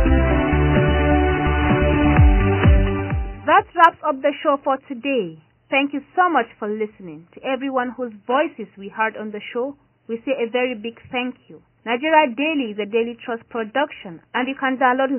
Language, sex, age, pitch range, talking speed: English, female, 30-49, 190-260 Hz, 160 wpm